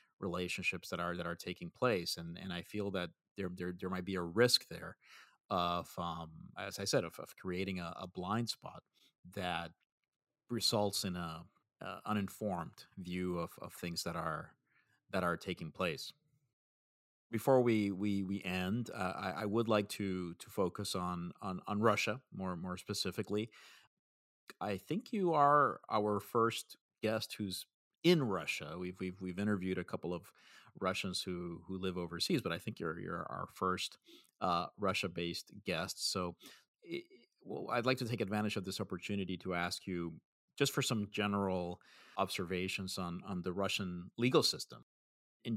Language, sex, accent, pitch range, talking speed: English, male, American, 90-105 Hz, 165 wpm